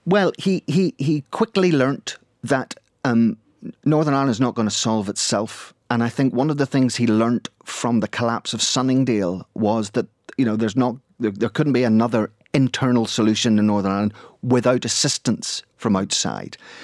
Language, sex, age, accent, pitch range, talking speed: English, male, 40-59, British, 105-130 Hz, 180 wpm